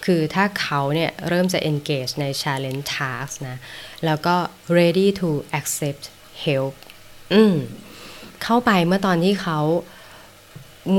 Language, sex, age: Thai, female, 20-39